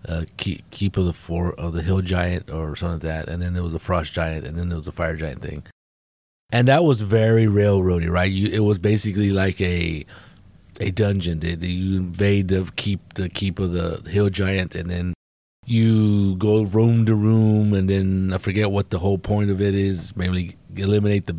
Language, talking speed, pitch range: English, 210 wpm, 90-110 Hz